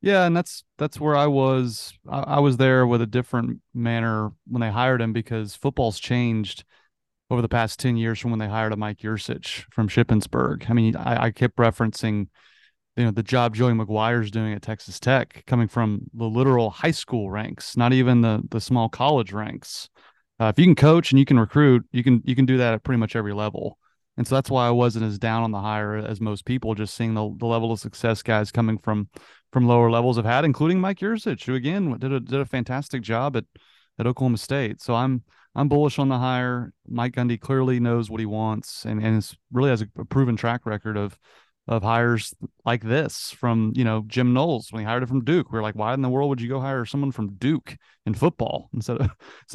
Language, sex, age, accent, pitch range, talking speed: English, male, 30-49, American, 110-130 Hz, 225 wpm